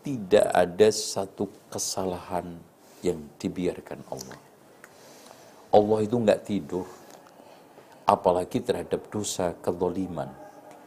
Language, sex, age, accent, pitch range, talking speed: Indonesian, male, 50-69, native, 95-120 Hz, 85 wpm